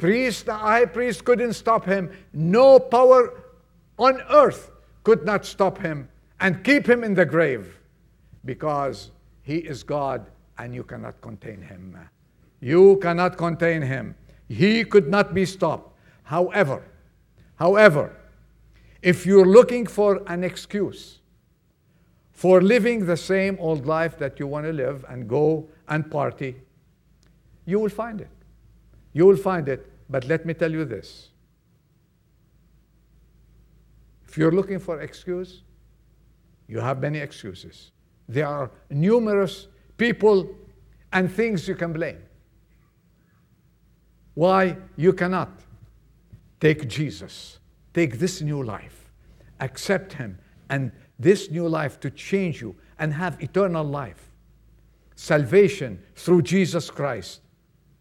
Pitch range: 140-195 Hz